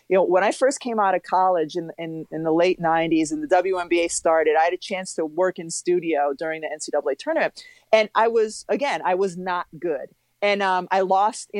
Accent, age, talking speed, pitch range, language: American, 30-49, 230 wpm, 160-190 Hz, English